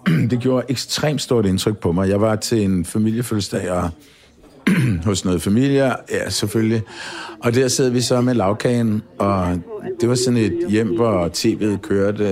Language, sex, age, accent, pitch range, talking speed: Danish, male, 60-79, native, 95-130 Hz, 160 wpm